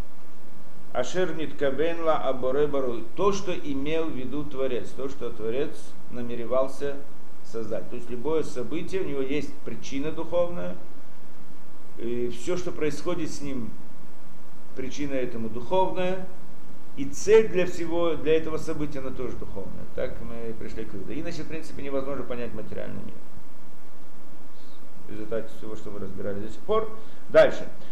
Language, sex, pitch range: Russian, male, 110-155 Hz